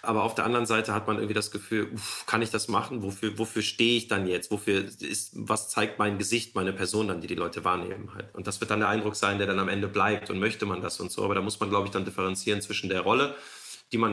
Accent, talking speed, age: German, 280 wpm, 30-49